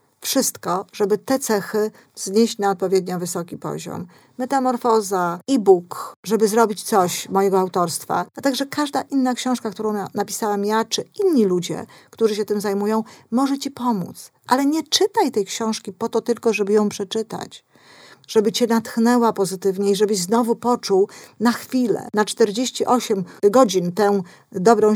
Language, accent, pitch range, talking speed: Polish, native, 195-245 Hz, 145 wpm